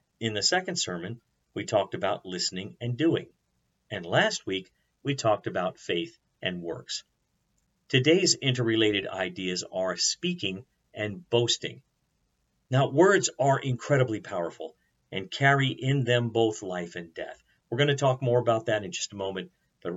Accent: American